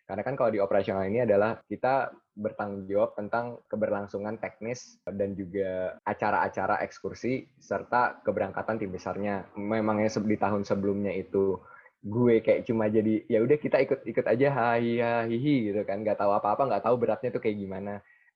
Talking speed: 165 wpm